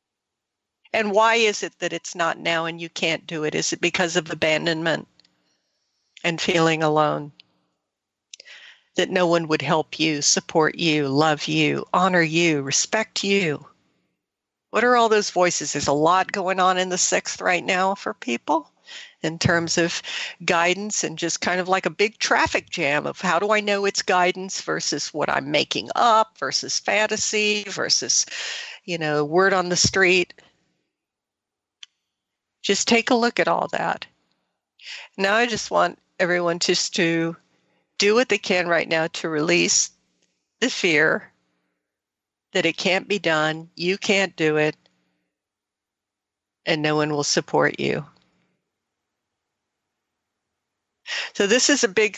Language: English